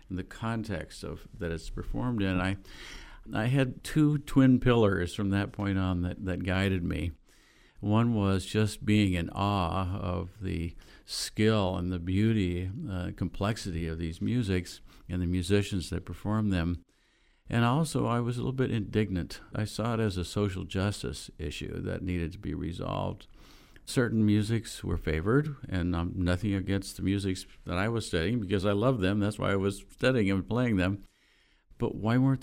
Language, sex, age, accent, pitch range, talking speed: English, male, 50-69, American, 90-110 Hz, 175 wpm